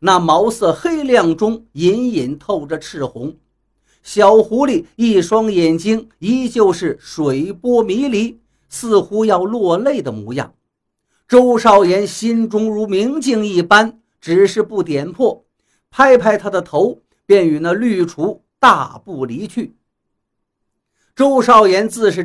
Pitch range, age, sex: 170-235 Hz, 50-69, male